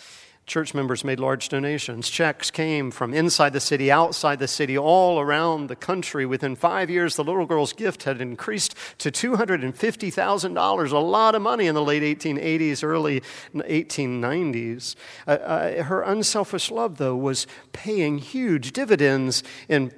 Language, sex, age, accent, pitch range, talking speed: English, male, 50-69, American, 125-165 Hz, 150 wpm